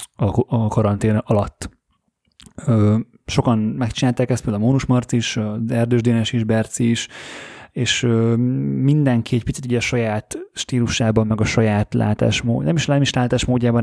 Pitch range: 110-125 Hz